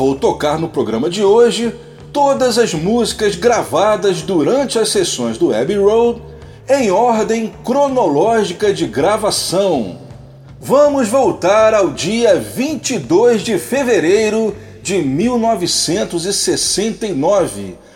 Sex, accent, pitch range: male, Brazilian, 195-260 Hz